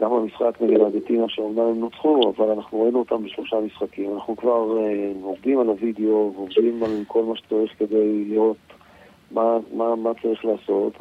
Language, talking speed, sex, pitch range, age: Hebrew, 170 wpm, male, 110-125 Hz, 50-69